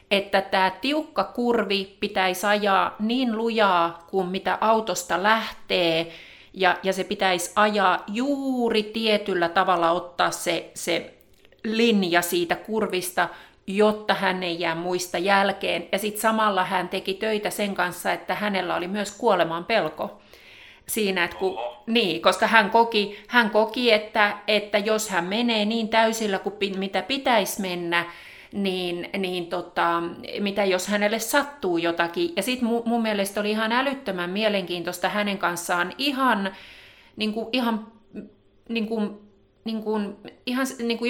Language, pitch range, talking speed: Finnish, 180-220 Hz, 120 wpm